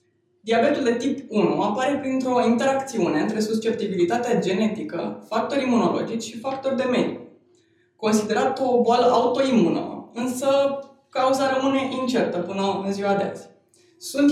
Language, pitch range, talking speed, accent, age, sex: Romanian, 205-260 Hz, 125 wpm, native, 20-39, female